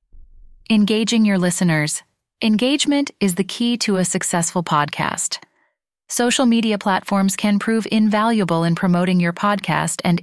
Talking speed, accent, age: 130 wpm, American, 30-49